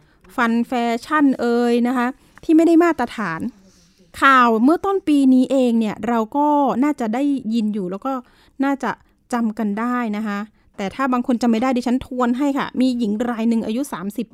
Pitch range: 215-265 Hz